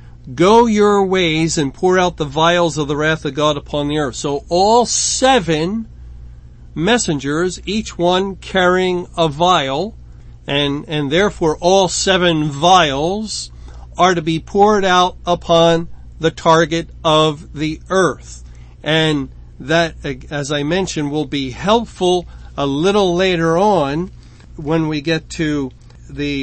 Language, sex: English, male